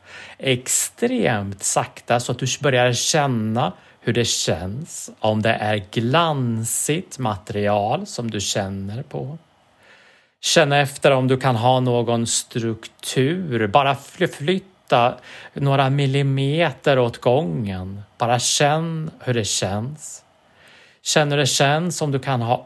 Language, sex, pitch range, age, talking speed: English, male, 115-145 Hz, 30-49, 120 wpm